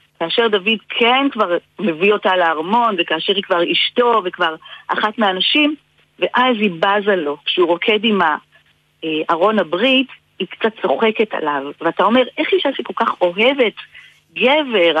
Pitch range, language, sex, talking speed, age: 180-250 Hz, Hebrew, female, 140 wpm, 40-59